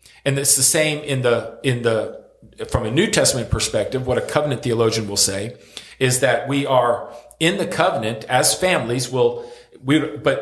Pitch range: 115-145 Hz